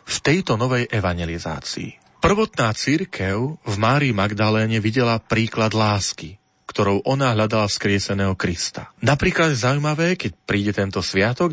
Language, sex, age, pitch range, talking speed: Slovak, male, 40-59, 100-130 Hz, 120 wpm